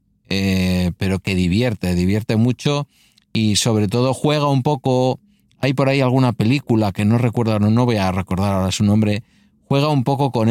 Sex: male